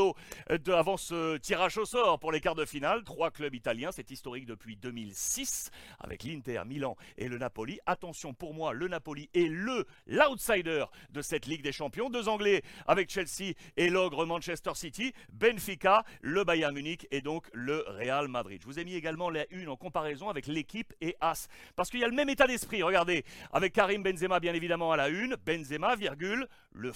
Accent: French